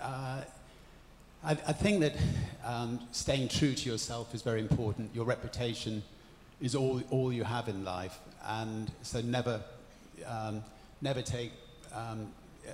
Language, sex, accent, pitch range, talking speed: English, male, British, 110-130 Hz, 135 wpm